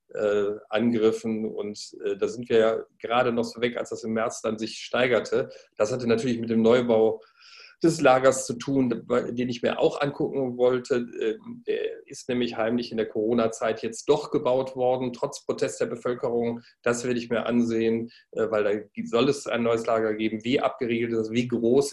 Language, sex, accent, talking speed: German, male, German, 185 wpm